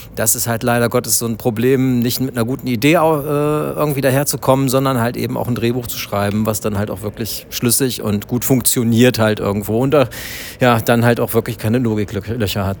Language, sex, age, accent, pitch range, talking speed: German, male, 40-59, German, 110-135 Hz, 205 wpm